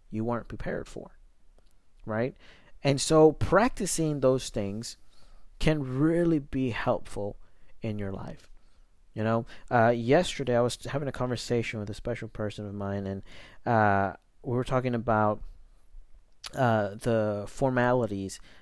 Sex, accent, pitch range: male, American, 105-125 Hz